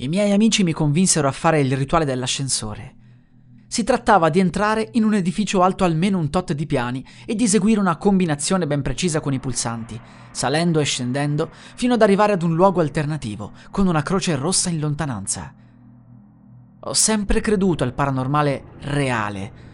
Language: Italian